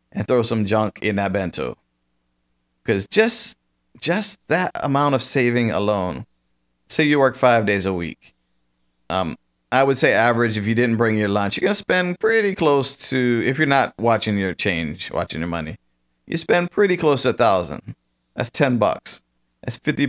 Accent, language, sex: American, English, male